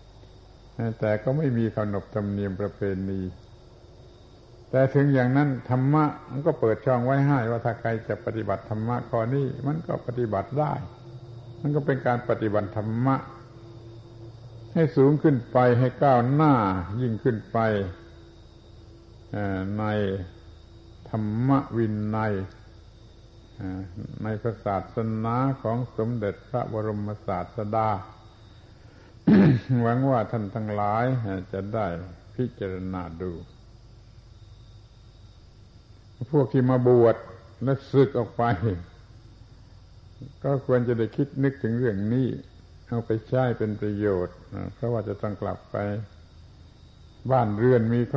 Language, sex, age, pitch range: Thai, male, 70-89, 105-125 Hz